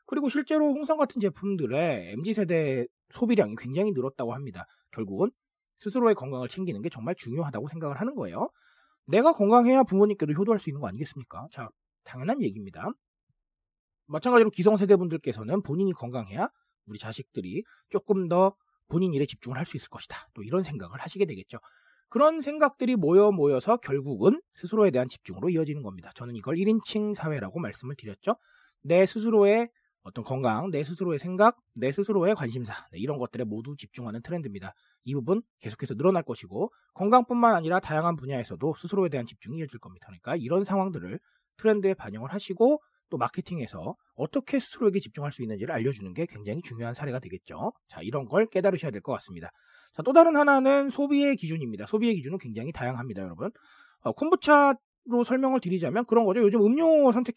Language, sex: Korean, male